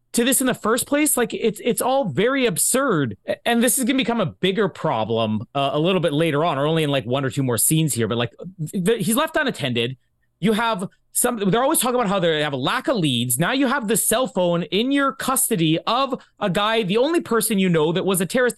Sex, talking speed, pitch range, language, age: male, 250 wpm, 150-230 Hz, English, 30-49